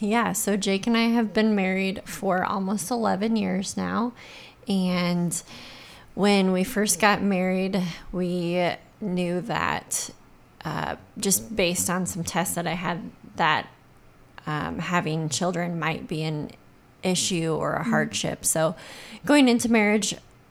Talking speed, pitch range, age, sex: 135 wpm, 160-200 Hz, 20-39, female